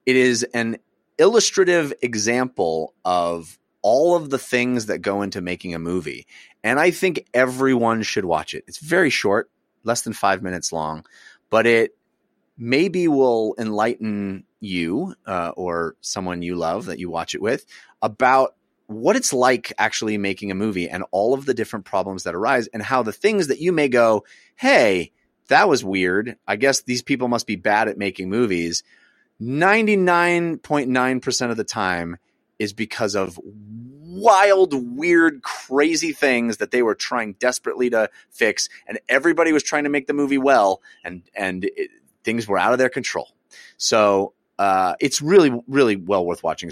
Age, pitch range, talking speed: 30-49, 100-145 Hz, 170 wpm